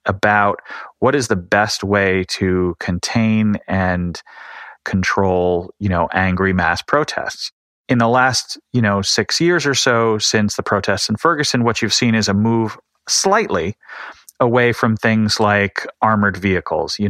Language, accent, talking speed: English, American, 150 wpm